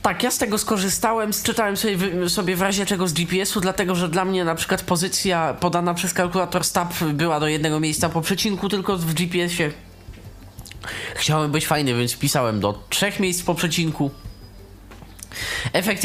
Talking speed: 170 wpm